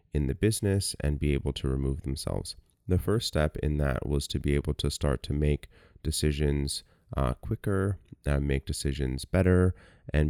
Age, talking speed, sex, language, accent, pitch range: 30-49, 175 wpm, male, English, American, 70-85 Hz